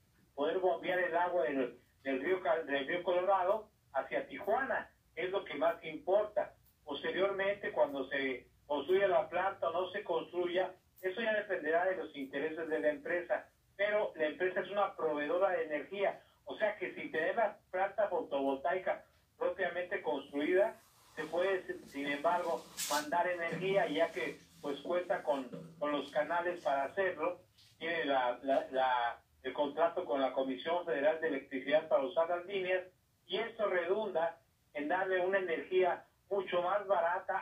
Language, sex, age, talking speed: Spanish, male, 50-69, 155 wpm